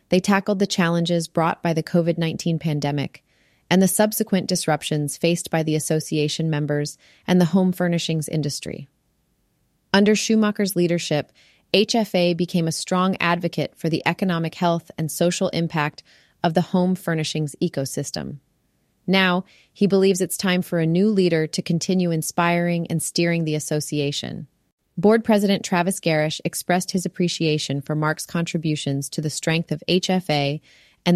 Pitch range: 150-180 Hz